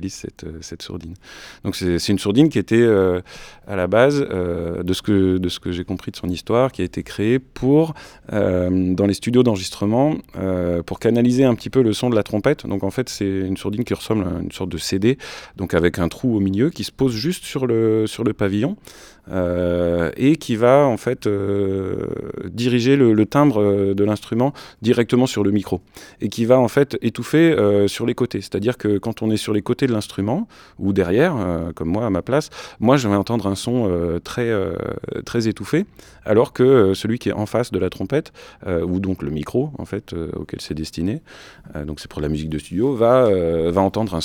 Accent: French